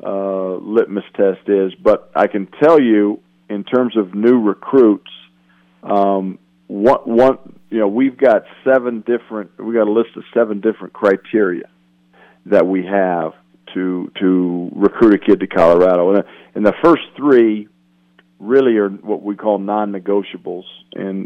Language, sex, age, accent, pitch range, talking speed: English, male, 50-69, American, 95-110 Hz, 150 wpm